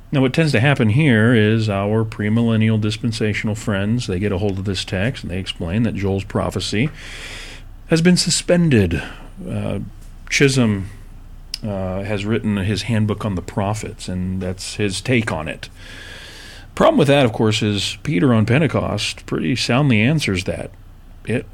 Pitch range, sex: 100-120 Hz, male